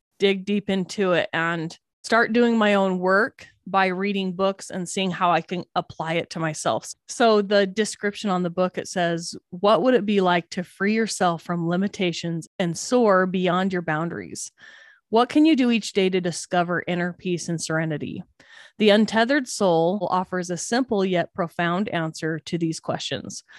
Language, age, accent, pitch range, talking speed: English, 20-39, American, 170-210 Hz, 175 wpm